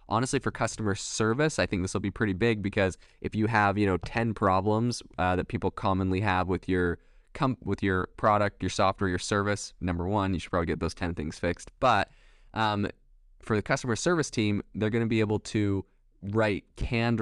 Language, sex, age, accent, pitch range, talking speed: English, male, 20-39, American, 90-110 Hz, 205 wpm